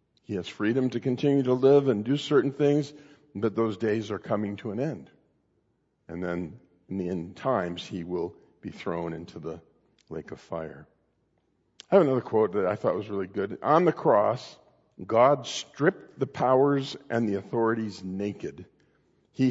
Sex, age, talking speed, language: male, 50-69, 170 wpm, English